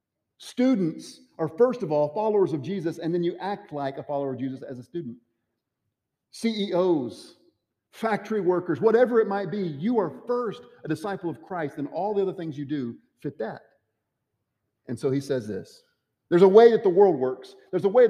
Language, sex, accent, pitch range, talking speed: English, male, American, 110-170 Hz, 190 wpm